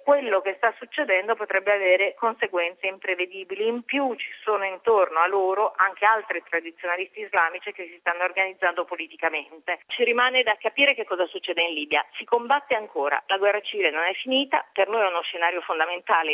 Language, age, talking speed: Italian, 40-59, 175 wpm